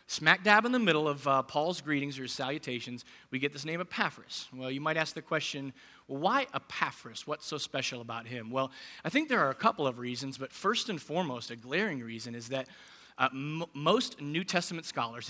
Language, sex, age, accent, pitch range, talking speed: English, male, 30-49, American, 130-170 Hz, 205 wpm